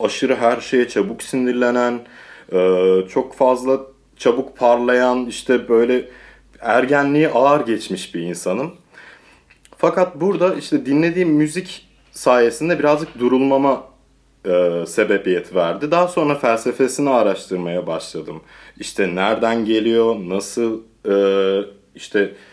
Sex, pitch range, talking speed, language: male, 105-135 Hz, 95 wpm, Turkish